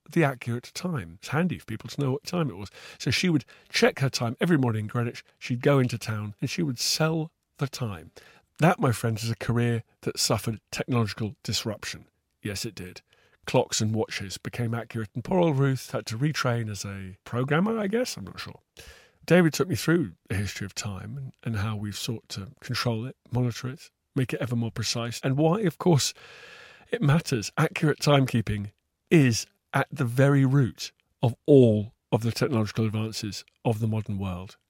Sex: male